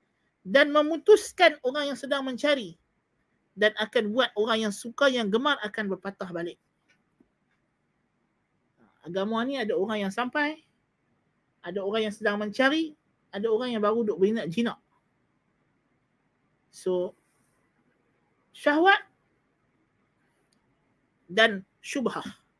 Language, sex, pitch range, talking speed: Malay, male, 205-290 Hz, 105 wpm